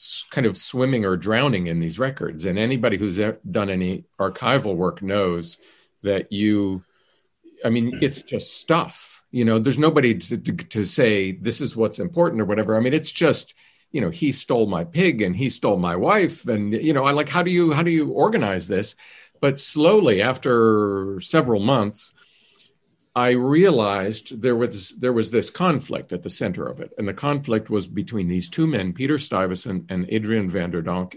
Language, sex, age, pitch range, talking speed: English, male, 50-69, 105-130 Hz, 185 wpm